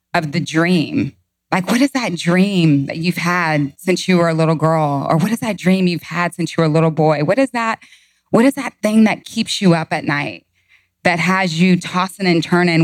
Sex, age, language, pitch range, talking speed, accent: female, 20-39, English, 165-205 Hz, 230 wpm, American